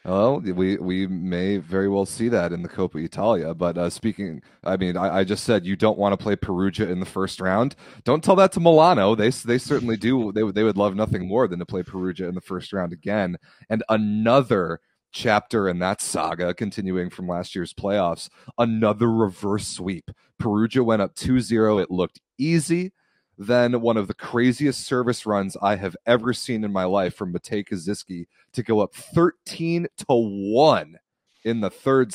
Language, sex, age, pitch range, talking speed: English, male, 30-49, 95-115 Hz, 190 wpm